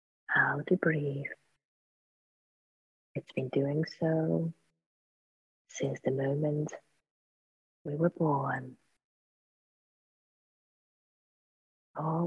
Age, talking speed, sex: 40-59, 70 wpm, female